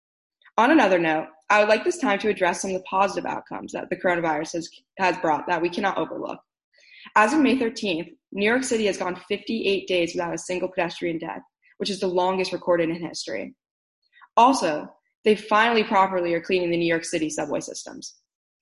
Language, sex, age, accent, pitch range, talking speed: English, female, 20-39, American, 175-215 Hz, 195 wpm